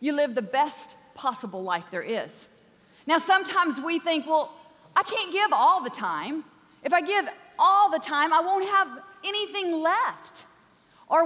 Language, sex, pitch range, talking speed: English, female, 275-355 Hz, 165 wpm